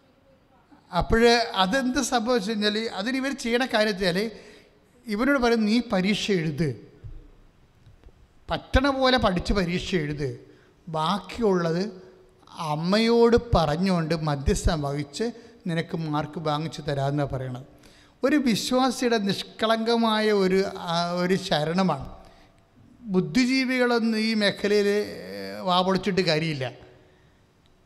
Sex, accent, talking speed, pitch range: male, Indian, 50 wpm, 165-225 Hz